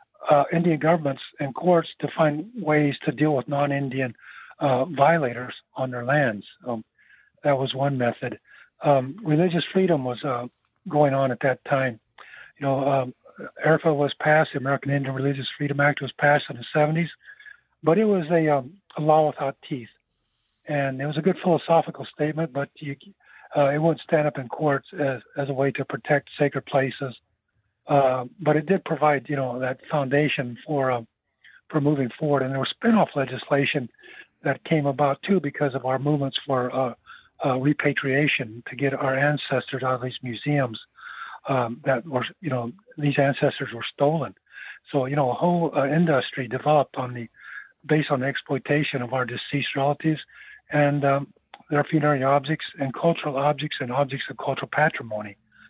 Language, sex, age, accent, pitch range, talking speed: English, male, 50-69, American, 130-150 Hz, 175 wpm